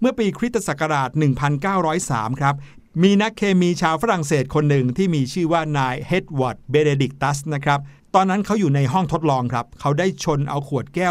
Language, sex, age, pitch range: Thai, male, 60-79, 135-180 Hz